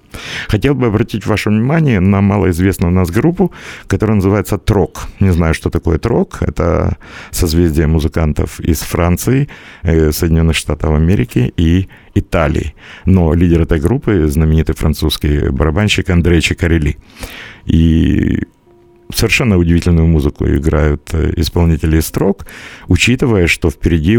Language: Russian